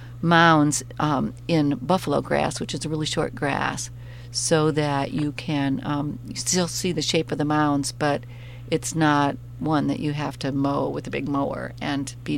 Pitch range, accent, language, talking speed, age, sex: 130-175 Hz, American, English, 185 wpm, 50-69, female